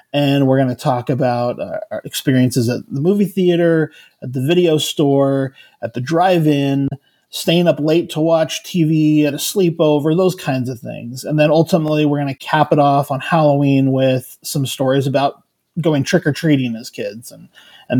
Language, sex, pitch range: English, male, 135-165 Hz